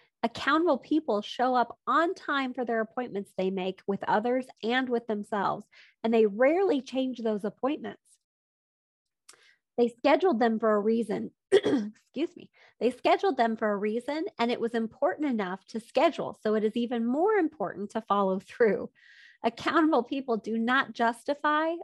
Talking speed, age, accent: 155 wpm, 30-49, American